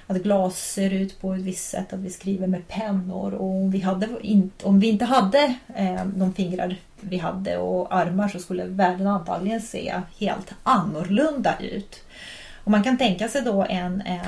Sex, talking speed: female, 175 wpm